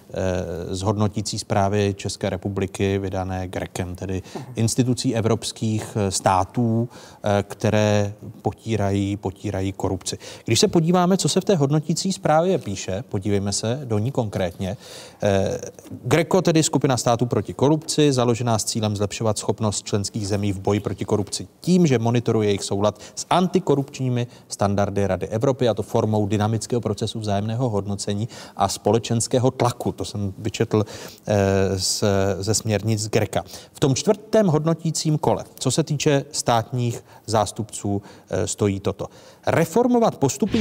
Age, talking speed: 30-49, 125 wpm